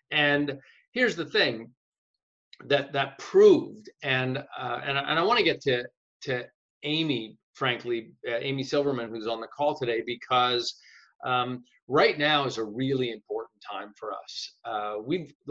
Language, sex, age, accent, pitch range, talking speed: English, male, 40-59, American, 115-140 Hz, 155 wpm